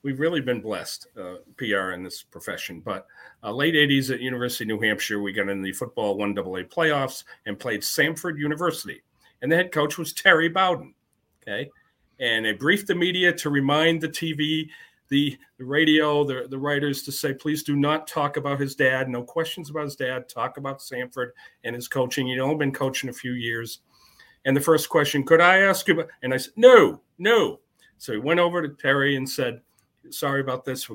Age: 40-59